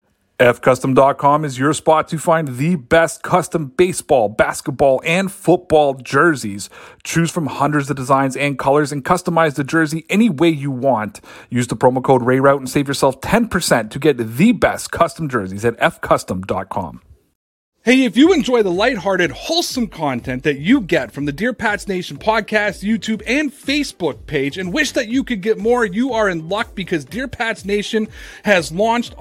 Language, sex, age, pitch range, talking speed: English, male, 30-49, 160-225 Hz, 175 wpm